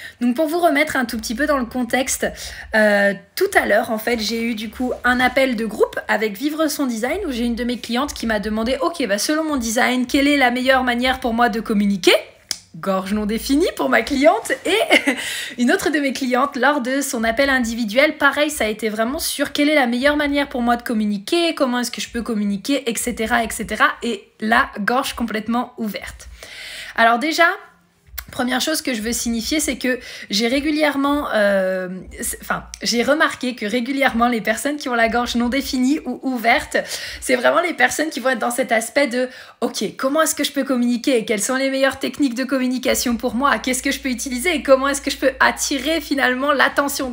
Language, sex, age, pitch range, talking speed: French, female, 20-39, 230-285 Hz, 210 wpm